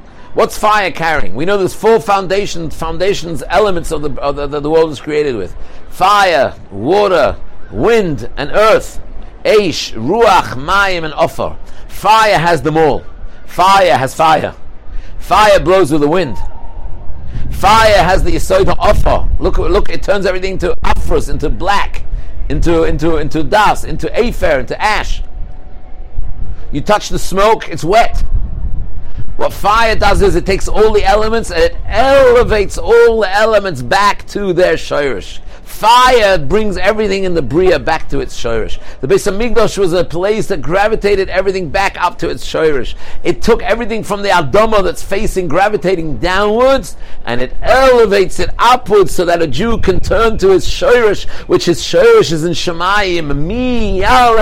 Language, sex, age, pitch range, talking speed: English, male, 60-79, 155-210 Hz, 160 wpm